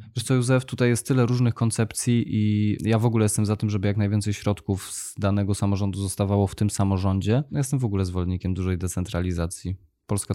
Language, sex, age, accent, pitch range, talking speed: Polish, male, 20-39, native, 95-115 Hz, 195 wpm